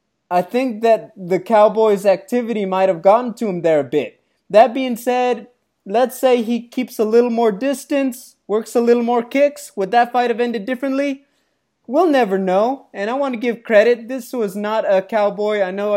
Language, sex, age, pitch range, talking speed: English, male, 20-39, 175-225 Hz, 195 wpm